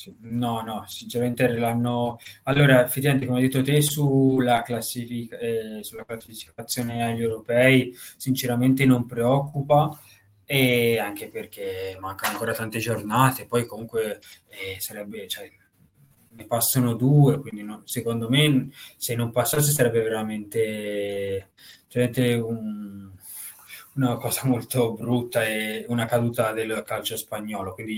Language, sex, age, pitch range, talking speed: Italian, male, 20-39, 115-135 Hz, 120 wpm